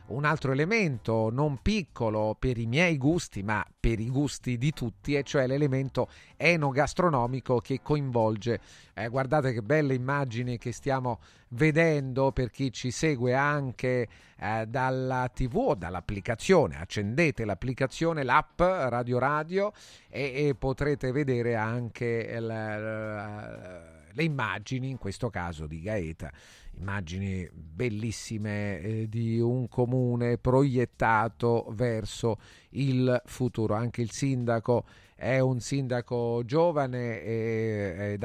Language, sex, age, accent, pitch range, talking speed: Italian, male, 40-59, native, 110-135 Hz, 115 wpm